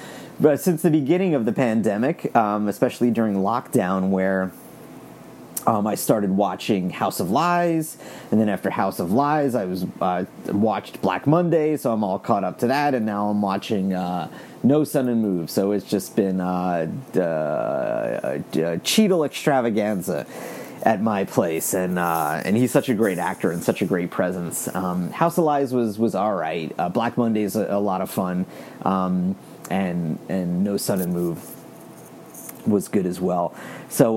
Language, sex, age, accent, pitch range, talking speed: English, male, 30-49, American, 95-135 Hz, 180 wpm